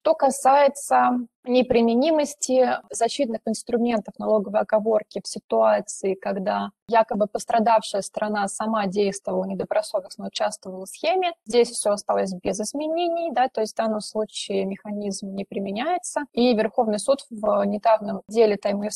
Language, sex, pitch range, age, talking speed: Russian, female, 205-250 Hz, 20-39, 125 wpm